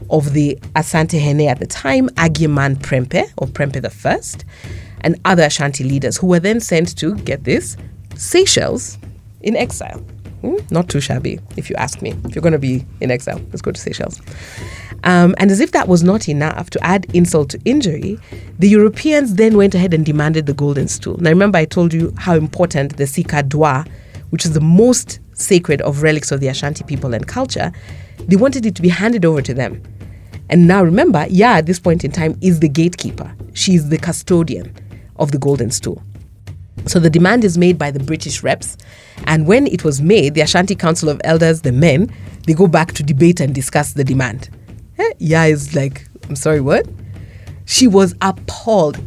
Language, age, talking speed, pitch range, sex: English, 30-49, 195 wpm, 130-180 Hz, female